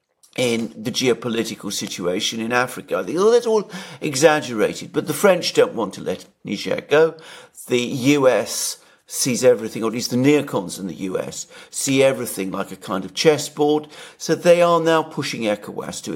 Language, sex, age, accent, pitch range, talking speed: English, male, 50-69, British, 110-155 Hz, 165 wpm